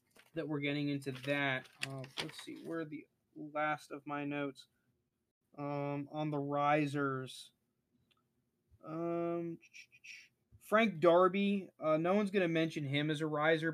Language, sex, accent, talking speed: English, male, American, 140 wpm